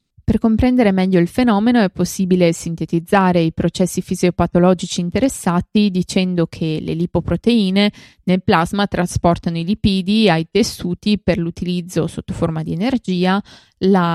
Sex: female